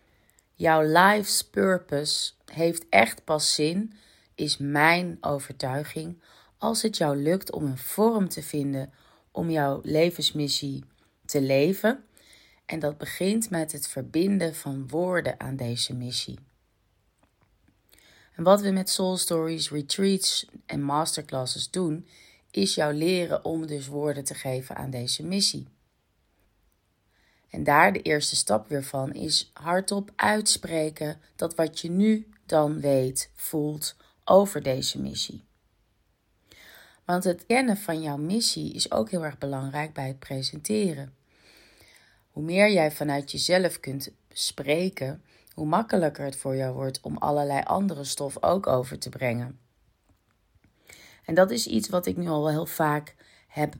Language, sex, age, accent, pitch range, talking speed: Dutch, female, 30-49, Dutch, 135-170 Hz, 135 wpm